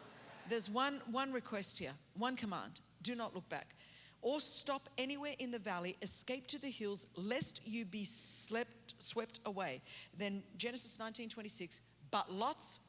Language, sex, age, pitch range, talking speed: English, female, 40-59, 210-270 Hz, 155 wpm